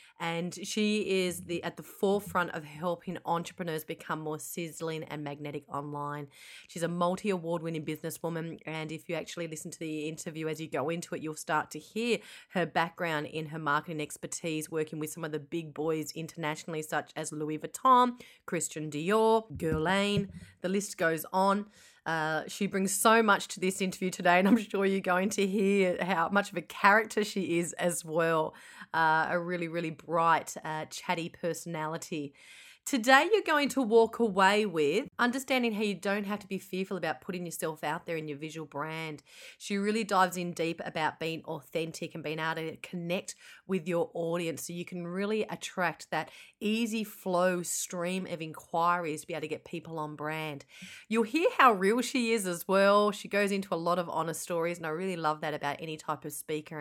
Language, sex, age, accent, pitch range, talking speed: English, female, 30-49, Australian, 160-195 Hz, 190 wpm